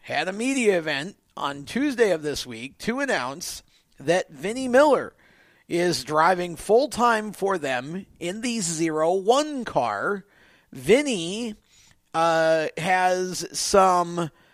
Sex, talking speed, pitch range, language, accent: male, 115 wpm, 155-205 Hz, German, American